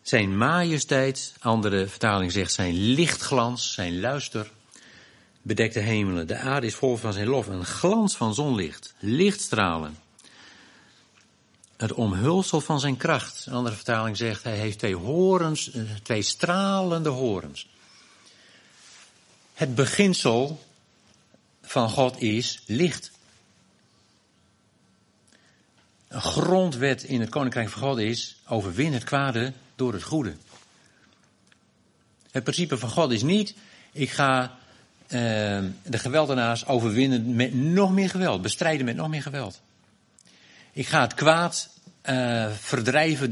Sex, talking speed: male, 120 wpm